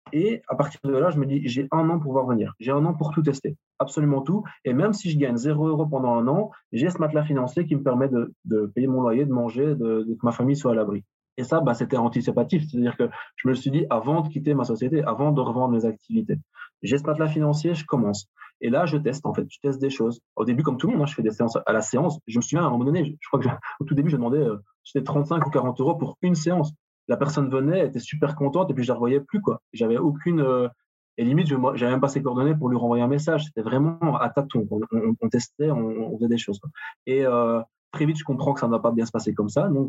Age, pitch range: 20-39, 115-150 Hz